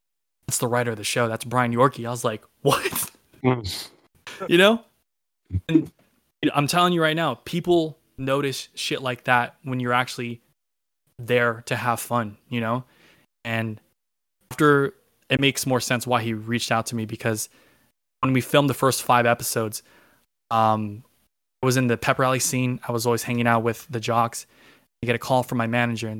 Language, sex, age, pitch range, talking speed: English, male, 20-39, 115-130 Hz, 185 wpm